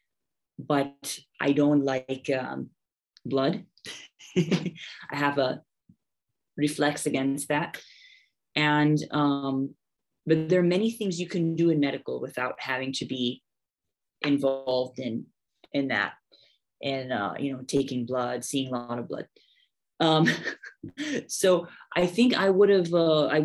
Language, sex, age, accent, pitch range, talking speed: English, female, 20-39, American, 130-155 Hz, 135 wpm